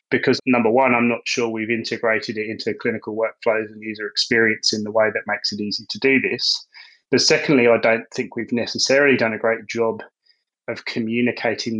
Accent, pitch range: British, 110-125 Hz